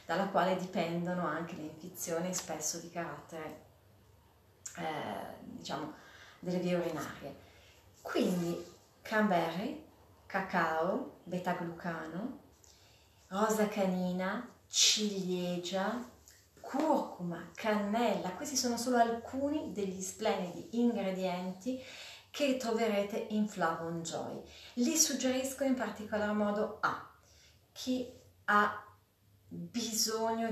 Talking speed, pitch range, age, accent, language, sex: 85 wpm, 175-220 Hz, 30-49, native, Italian, female